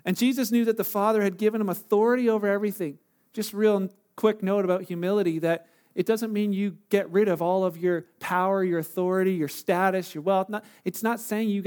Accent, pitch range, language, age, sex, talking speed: American, 195-235 Hz, English, 40-59, male, 210 wpm